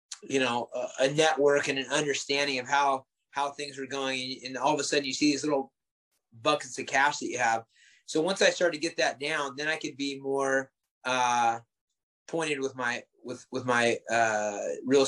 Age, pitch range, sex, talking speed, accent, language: 30-49, 130-150 Hz, male, 205 wpm, American, English